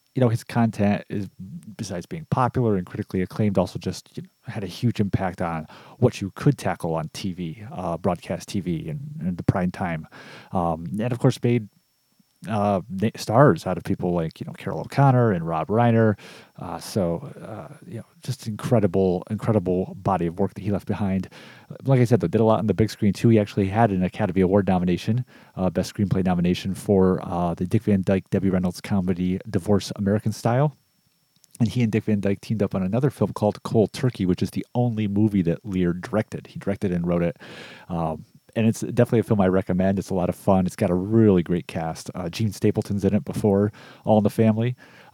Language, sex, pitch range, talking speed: English, male, 95-115 Hz, 205 wpm